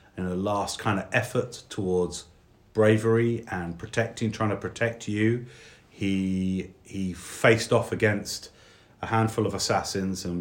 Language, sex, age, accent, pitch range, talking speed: English, male, 30-49, British, 90-110 Hz, 140 wpm